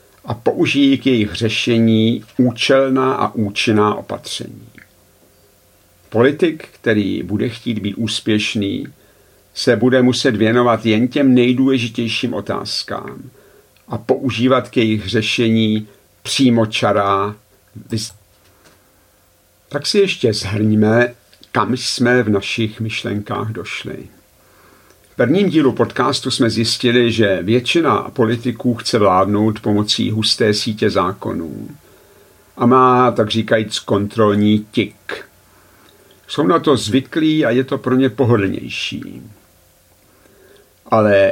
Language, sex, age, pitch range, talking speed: Czech, male, 50-69, 105-125 Hz, 105 wpm